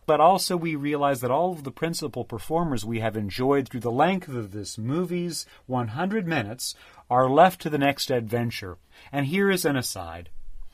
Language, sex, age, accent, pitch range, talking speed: English, male, 40-59, American, 105-145 Hz, 180 wpm